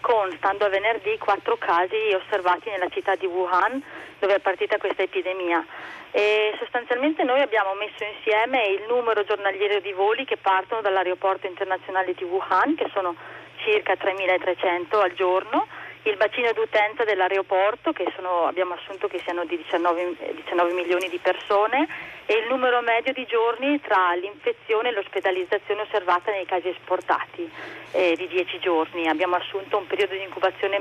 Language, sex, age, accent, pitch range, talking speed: Italian, female, 30-49, native, 185-235 Hz, 155 wpm